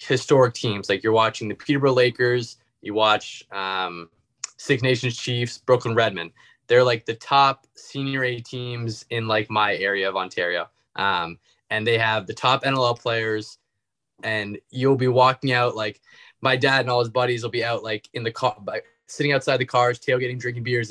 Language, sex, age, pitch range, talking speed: English, male, 20-39, 115-135 Hz, 185 wpm